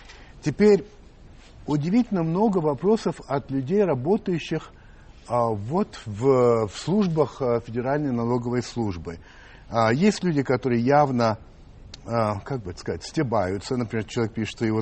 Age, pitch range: 60-79, 115-165 Hz